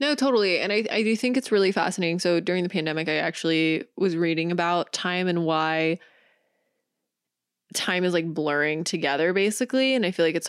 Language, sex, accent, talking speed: English, female, American, 190 wpm